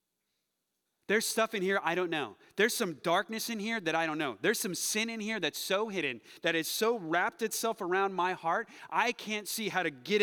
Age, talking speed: 30-49, 225 wpm